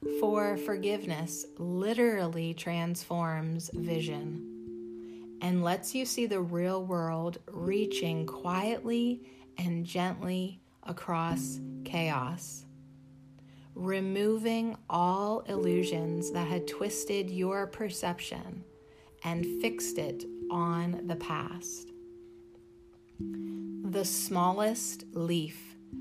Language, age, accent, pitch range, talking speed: English, 30-49, American, 140-185 Hz, 80 wpm